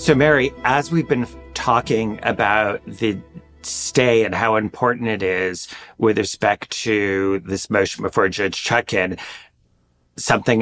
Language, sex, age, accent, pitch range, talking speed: English, male, 40-59, American, 100-120 Hz, 130 wpm